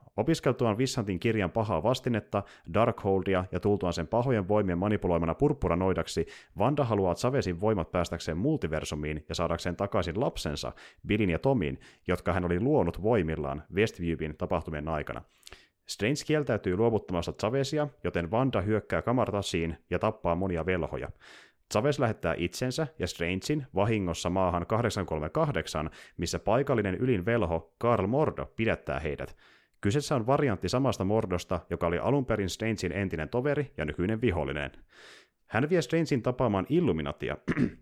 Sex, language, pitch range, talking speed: male, Finnish, 85-120 Hz, 130 wpm